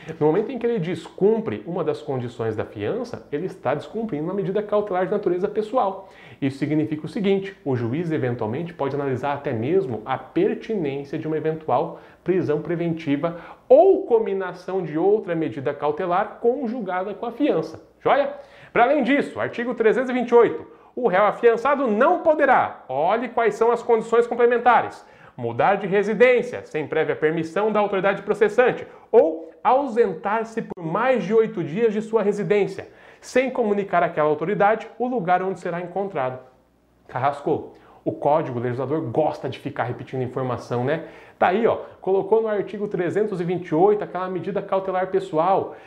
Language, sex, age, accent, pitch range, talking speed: Portuguese, male, 30-49, Brazilian, 155-225 Hz, 150 wpm